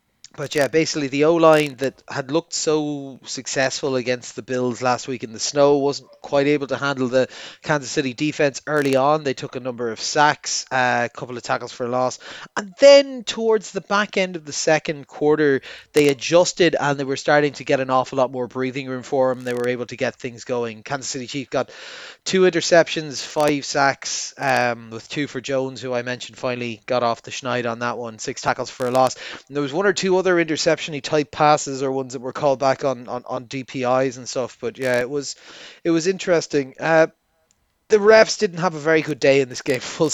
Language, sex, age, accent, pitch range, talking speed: English, male, 30-49, Irish, 125-155 Hz, 220 wpm